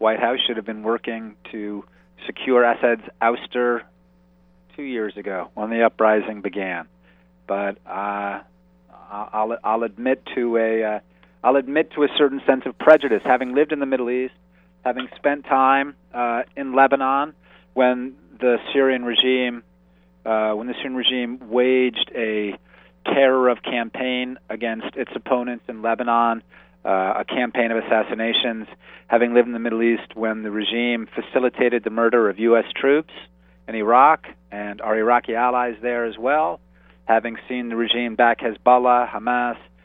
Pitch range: 105-125 Hz